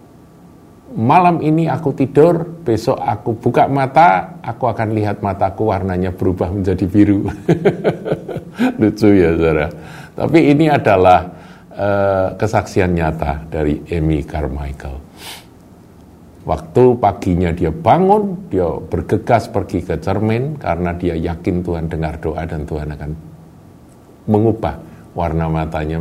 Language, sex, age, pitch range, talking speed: Indonesian, male, 50-69, 80-115 Hz, 115 wpm